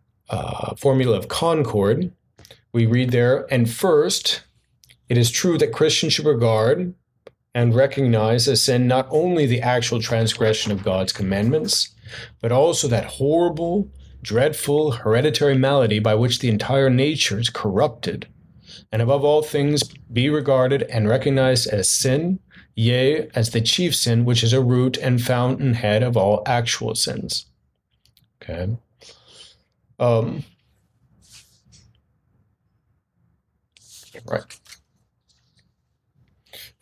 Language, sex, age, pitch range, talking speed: English, male, 40-59, 115-145 Hz, 115 wpm